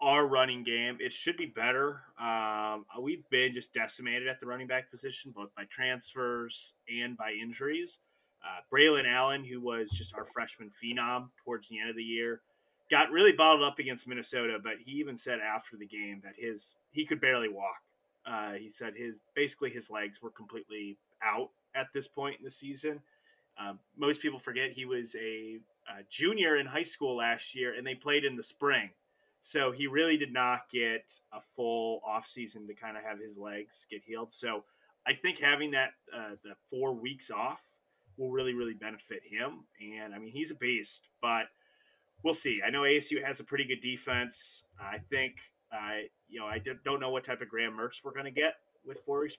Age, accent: 30-49, American